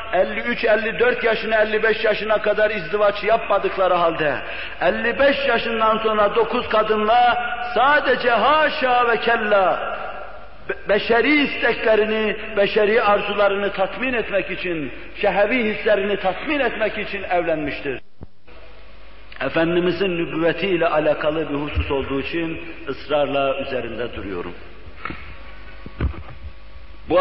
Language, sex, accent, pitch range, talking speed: Turkish, male, native, 170-210 Hz, 95 wpm